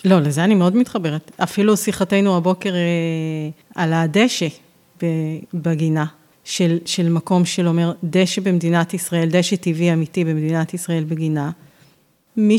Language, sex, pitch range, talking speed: Hebrew, female, 165-195 Hz, 125 wpm